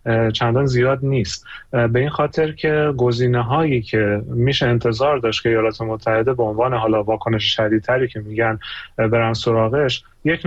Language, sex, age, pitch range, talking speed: Persian, male, 30-49, 115-135 Hz, 150 wpm